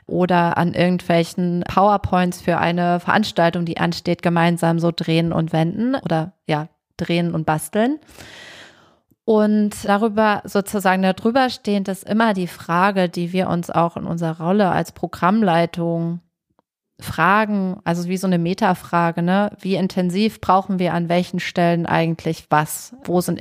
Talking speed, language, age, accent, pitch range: 140 wpm, German, 30-49, German, 170-190 Hz